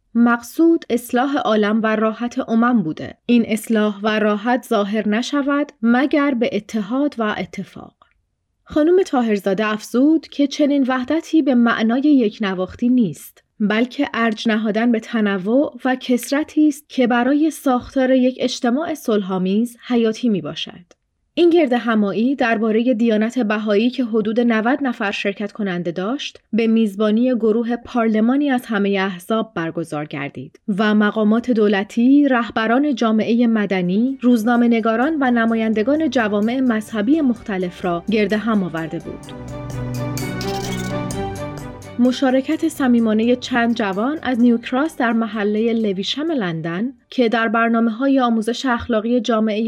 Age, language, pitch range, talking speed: 30-49, Persian, 210-255 Hz, 125 wpm